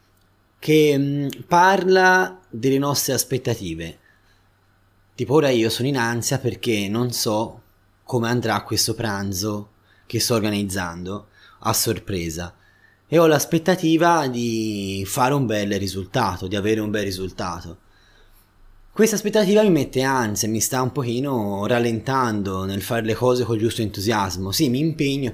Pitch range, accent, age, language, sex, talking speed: 100-140 Hz, native, 20-39, Italian, male, 135 wpm